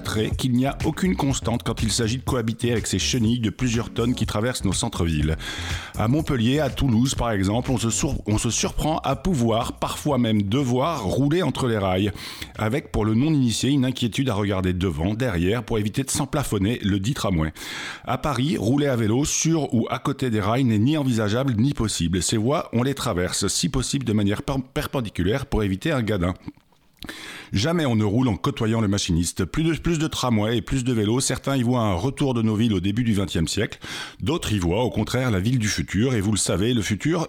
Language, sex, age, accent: French, male, 50-69, French